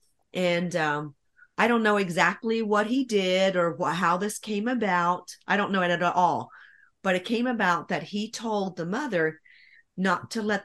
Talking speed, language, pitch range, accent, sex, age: 185 wpm, English, 170-200 Hz, American, female, 40-59